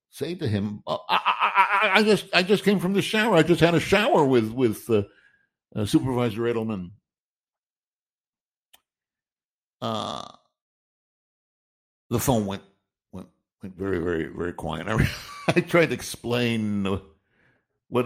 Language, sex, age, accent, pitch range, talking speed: English, male, 60-79, American, 100-135 Hz, 140 wpm